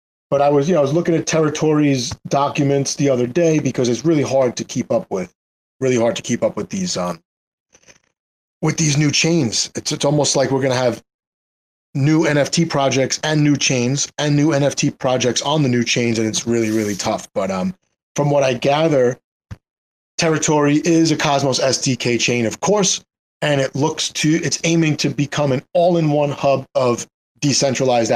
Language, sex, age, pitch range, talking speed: English, male, 30-49, 120-155 Hz, 190 wpm